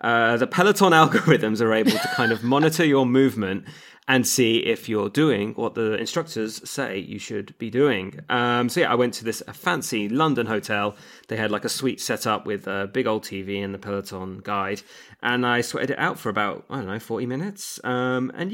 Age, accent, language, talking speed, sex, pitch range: 20-39, British, English, 210 wpm, male, 105-135 Hz